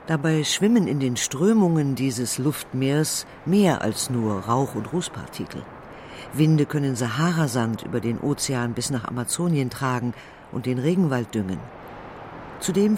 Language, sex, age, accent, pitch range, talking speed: German, female, 50-69, German, 125-165 Hz, 130 wpm